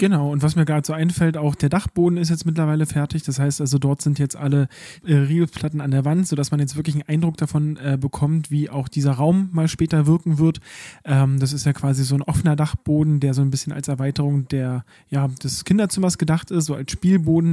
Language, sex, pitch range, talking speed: German, male, 145-160 Hz, 210 wpm